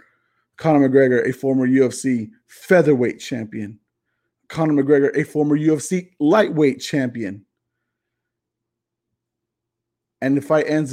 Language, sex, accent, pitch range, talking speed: English, male, American, 130-165 Hz, 100 wpm